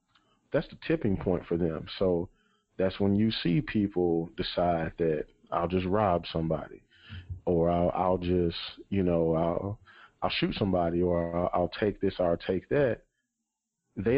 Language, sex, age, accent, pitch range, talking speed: English, male, 40-59, American, 90-110 Hz, 155 wpm